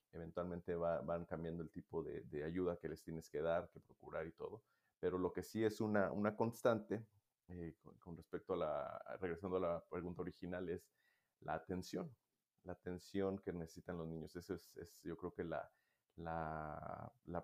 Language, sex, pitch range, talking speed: Spanish, male, 85-100 Hz, 185 wpm